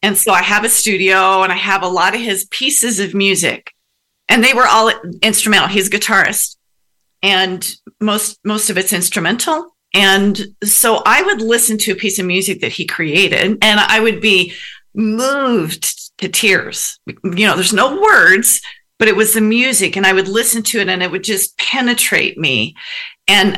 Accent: American